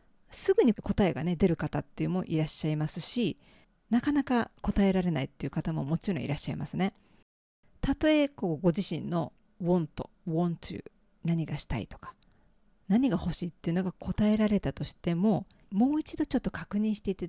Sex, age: female, 40-59